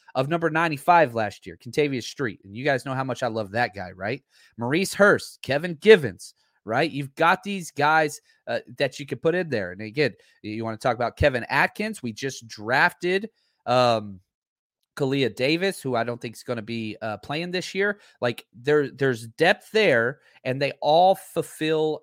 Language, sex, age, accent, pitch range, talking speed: English, male, 30-49, American, 130-200 Hz, 190 wpm